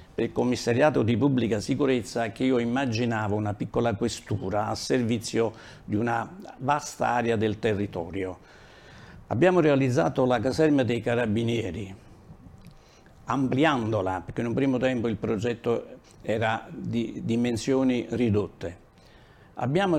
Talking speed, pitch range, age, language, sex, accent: 115 wpm, 105-135 Hz, 50-69, Italian, male, native